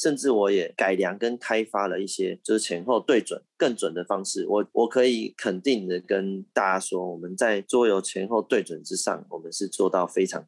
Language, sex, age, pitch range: Chinese, male, 20-39, 95-110 Hz